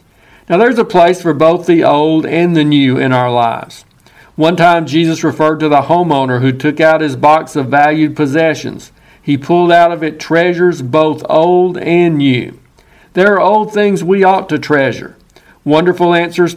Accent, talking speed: American, 180 wpm